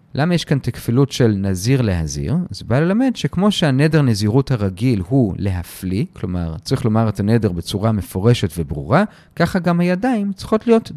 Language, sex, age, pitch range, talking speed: Hebrew, male, 40-59, 120-190 Hz, 160 wpm